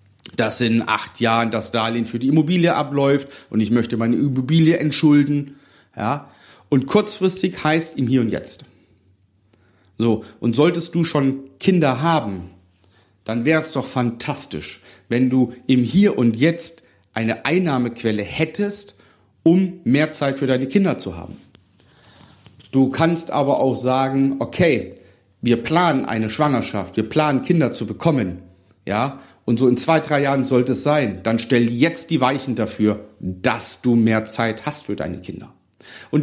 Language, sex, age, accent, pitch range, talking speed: German, male, 40-59, German, 110-155 Hz, 150 wpm